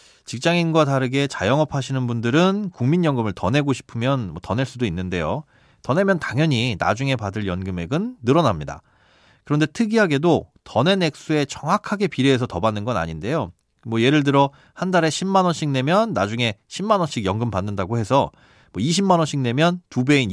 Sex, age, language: male, 30-49, Korean